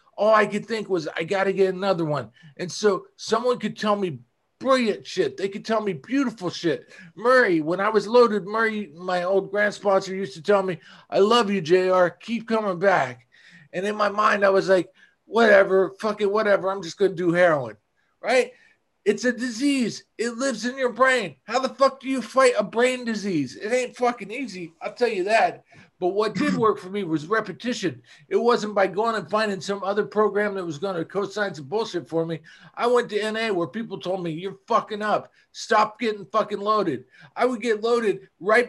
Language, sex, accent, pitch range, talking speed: English, male, American, 185-230 Hz, 210 wpm